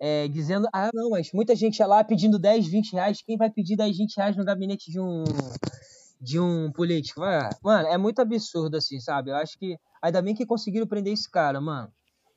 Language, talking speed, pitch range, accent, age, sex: Portuguese, 200 wpm, 165-215 Hz, Brazilian, 20-39, male